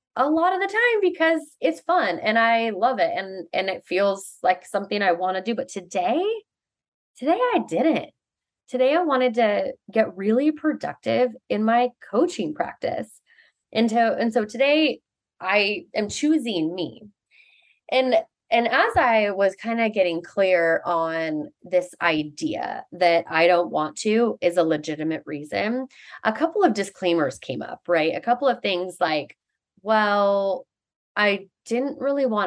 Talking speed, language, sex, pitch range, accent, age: 155 wpm, English, female, 180-275 Hz, American, 20-39